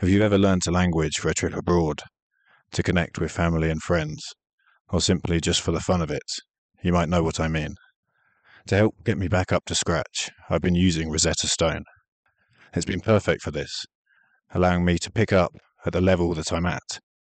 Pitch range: 80-95 Hz